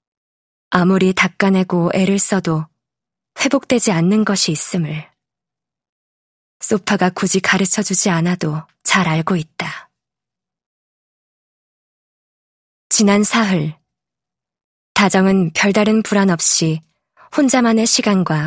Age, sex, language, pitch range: 20-39, female, Korean, 165-205 Hz